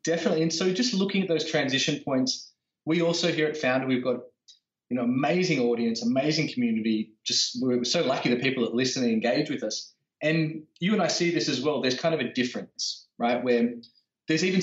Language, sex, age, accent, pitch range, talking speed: English, male, 30-49, Australian, 120-160 Hz, 210 wpm